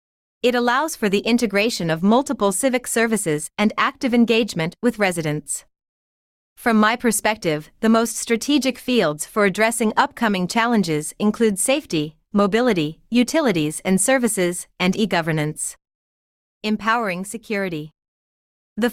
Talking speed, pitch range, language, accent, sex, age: 115 wpm, 160-225 Hz, English, American, female, 30-49